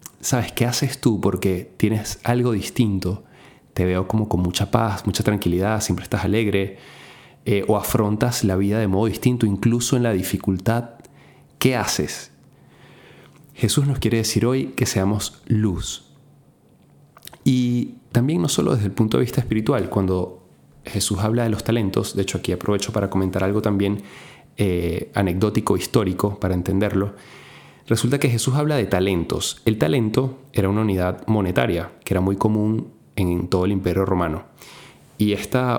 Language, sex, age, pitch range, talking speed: Spanish, male, 30-49, 95-120 Hz, 155 wpm